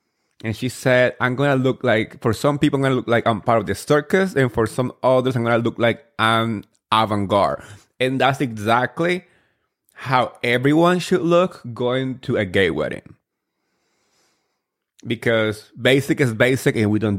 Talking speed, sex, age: 180 wpm, male, 30-49